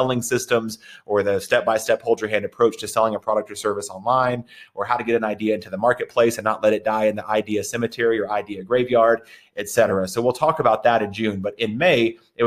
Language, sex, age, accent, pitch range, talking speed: English, male, 30-49, American, 105-120 Hz, 240 wpm